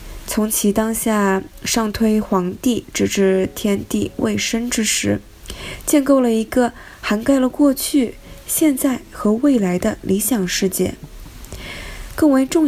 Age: 20-39